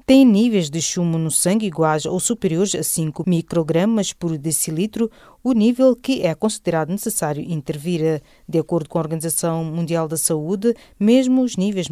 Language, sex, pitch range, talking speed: English, female, 150-195 Hz, 160 wpm